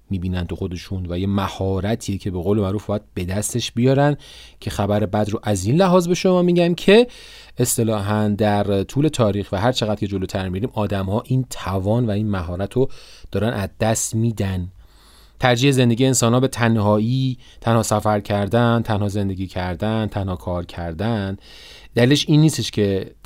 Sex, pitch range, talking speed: male, 95-120 Hz, 170 wpm